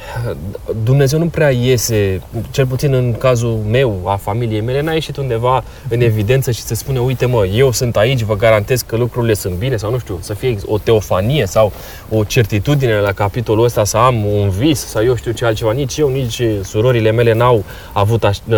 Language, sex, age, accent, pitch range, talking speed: Romanian, male, 20-39, native, 110-145 Hz, 195 wpm